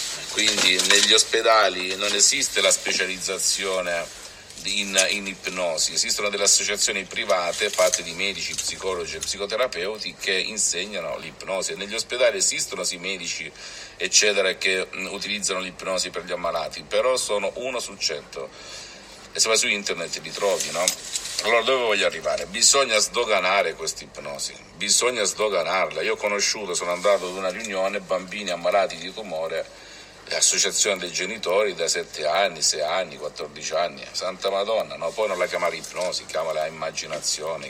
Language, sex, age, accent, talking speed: Italian, male, 50-69, native, 145 wpm